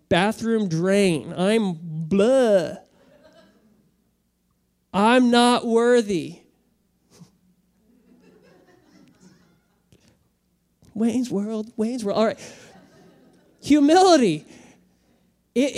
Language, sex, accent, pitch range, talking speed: English, male, American, 165-240 Hz, 55 wpm